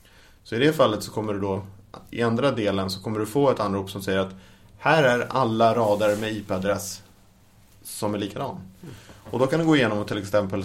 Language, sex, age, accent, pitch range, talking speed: English, male, 20-39, Norwegian, 95-115 Hz, 215 wpm